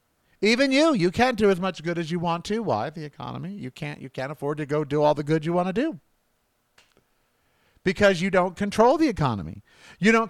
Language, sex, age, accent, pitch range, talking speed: English, male, 50-69, American, 145-225 Hz, 215 wpm